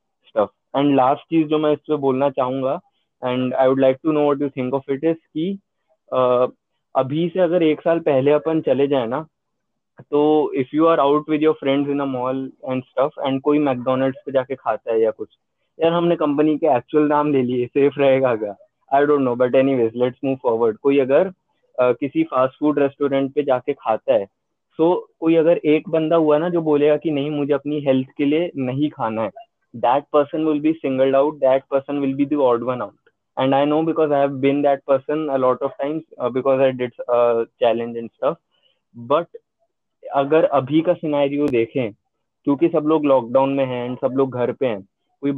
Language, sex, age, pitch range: Hindi, male, 20-39, 130-155 Hz